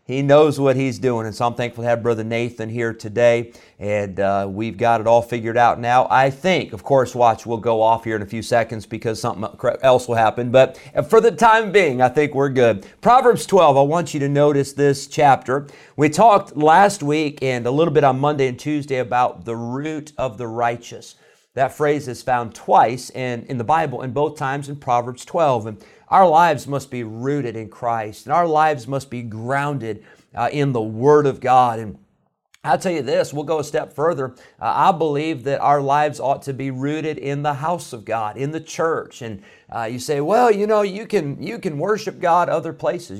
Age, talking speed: 50-69, 215 wpm